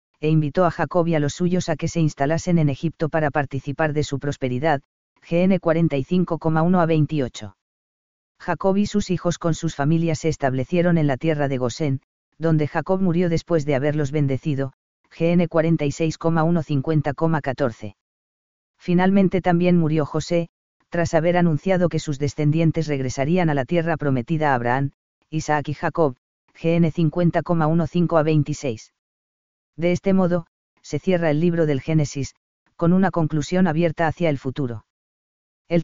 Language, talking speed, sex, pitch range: Spanish, 145 wpm, female, 145-170 Hz